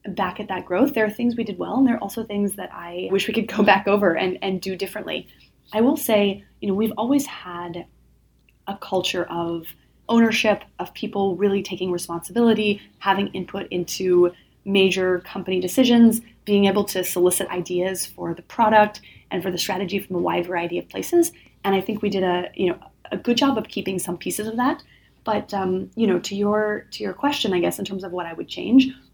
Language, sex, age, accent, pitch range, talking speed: English, female, 20-39, American, 180-220 Hz, 210 wpm